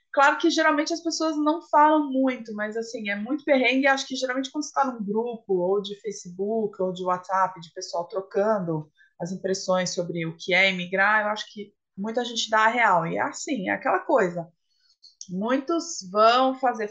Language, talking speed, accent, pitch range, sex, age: Portuguese, 190 wpm, Brazilian, 195-265 Hz, female, 20-39